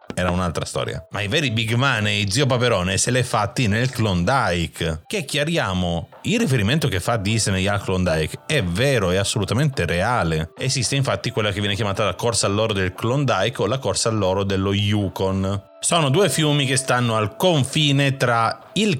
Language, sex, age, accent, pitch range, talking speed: Italian, male, 30-49, native, 100-135 Hz, 175 wpm